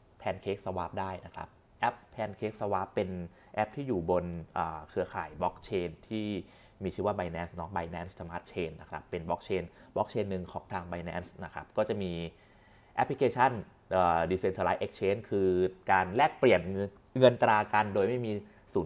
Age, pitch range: 20-39, 90-105 Hz